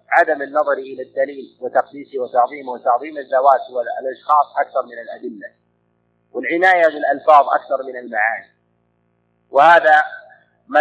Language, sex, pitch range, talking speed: Arabic, male, 135-185 Hz, 105 wpm